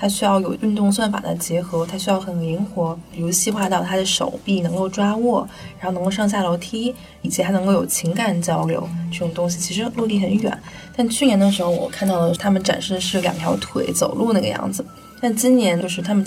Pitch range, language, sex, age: 175-205 Hz, Chinese, female, 20-39